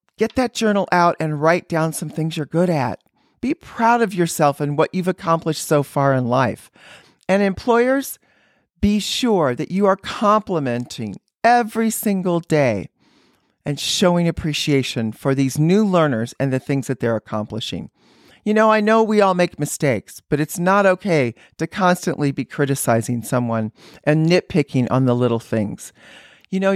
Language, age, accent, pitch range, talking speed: English, 40-59, American, 140-210 Hz, 165 wpm